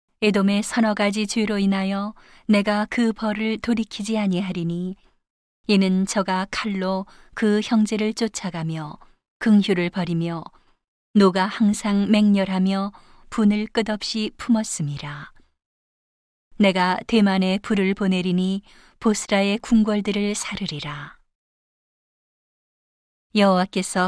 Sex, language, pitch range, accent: female, Korean, 185-210 Hz, native